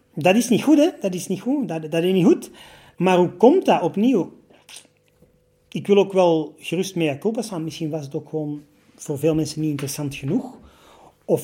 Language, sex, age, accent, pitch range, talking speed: Dutch, male, 40-59, Dutch, 155-195 Hz, 205 wpm